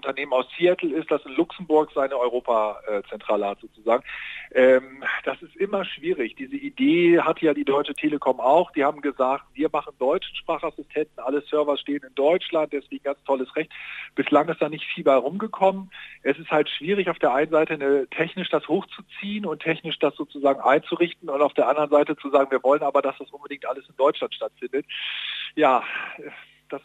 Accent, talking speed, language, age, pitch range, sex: German, 190 wpm, German, 40-59, 135-175 Hz, male